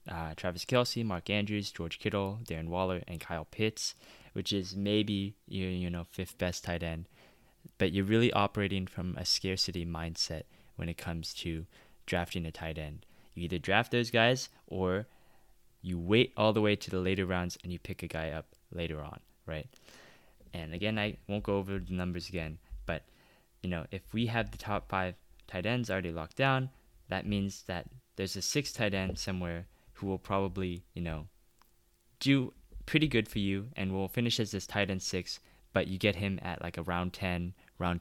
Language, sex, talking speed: English, male, 190 wpm